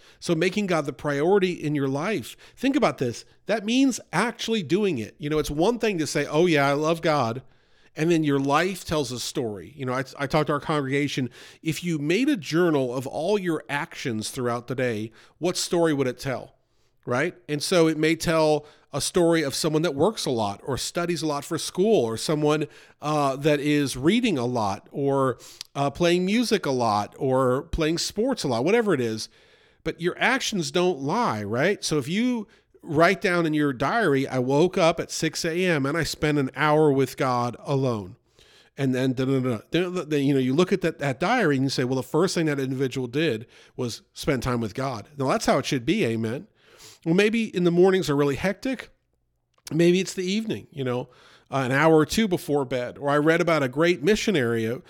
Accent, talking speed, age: American, 205 wpm, 40-59